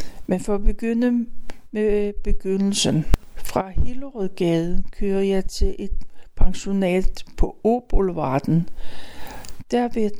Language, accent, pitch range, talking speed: Danish, native, 190-240 Hz, 100 wpm